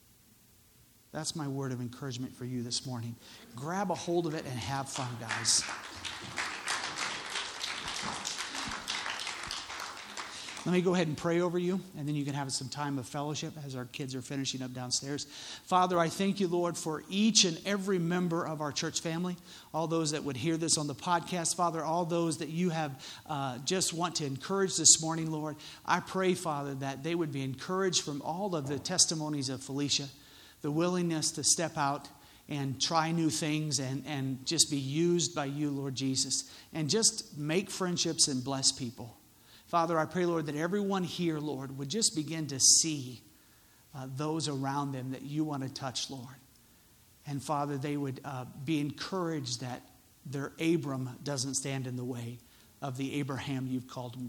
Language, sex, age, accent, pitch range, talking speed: English, male, 50-69, American, 130-165 Hz, 180 wpm